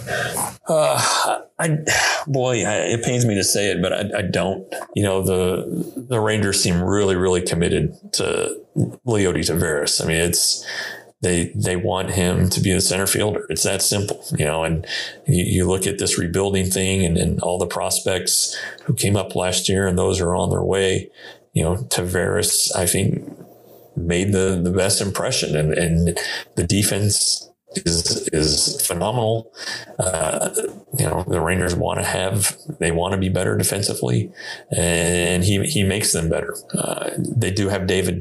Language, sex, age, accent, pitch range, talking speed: English, male, 30-49, American, 90-105 Hz, 170 wpm